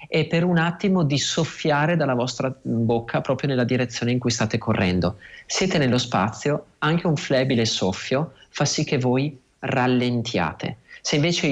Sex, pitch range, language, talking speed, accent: male, 115-150 Hz, Italian, 155 wpm, native